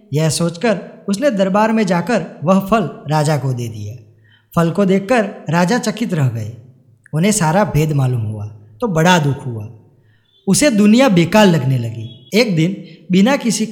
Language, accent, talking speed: Gujarati, native, 160 wpm